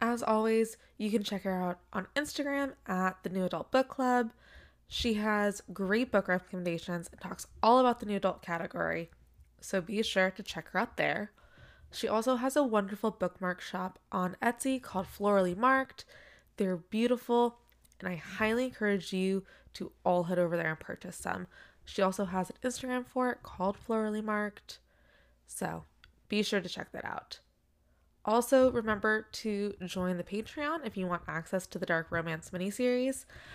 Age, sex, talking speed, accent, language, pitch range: 20-39, female, 170 wpm, American, English, 175-225 Hz